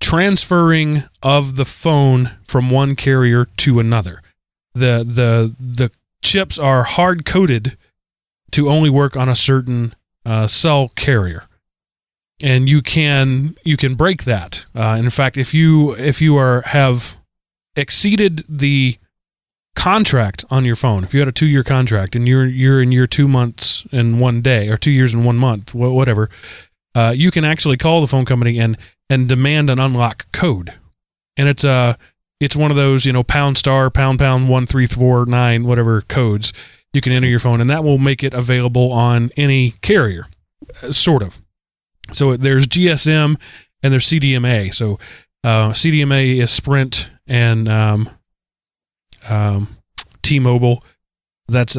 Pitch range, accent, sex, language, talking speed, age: 115-140 Hz, American, male, English, 155 wpm, 30-49